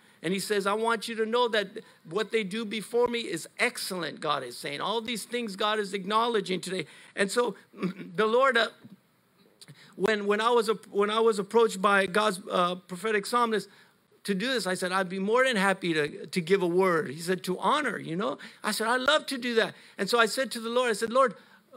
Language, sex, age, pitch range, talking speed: English, male, 50-69, 185-225 Hz, 225 wpm